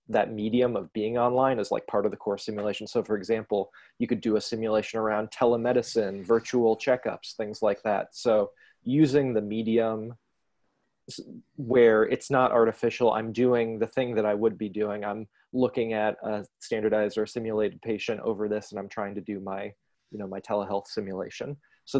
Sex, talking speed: male, 180 wpm